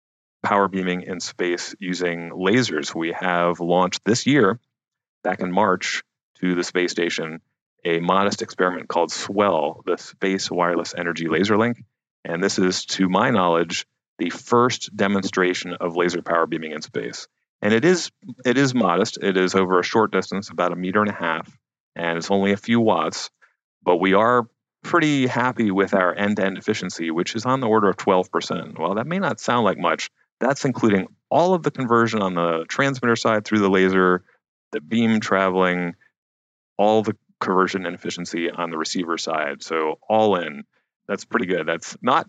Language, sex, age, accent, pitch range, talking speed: English, male, 30-49, American, 90-115 Hz, 175 wpm